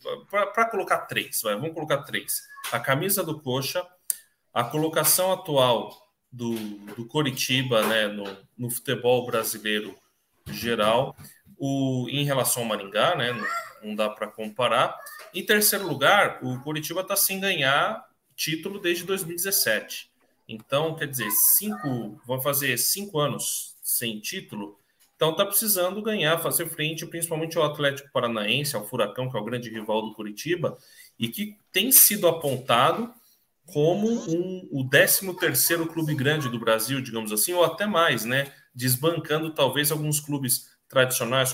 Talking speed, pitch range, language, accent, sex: 145 wpm, 120-170 Hz, Portuguese, Brazilian, male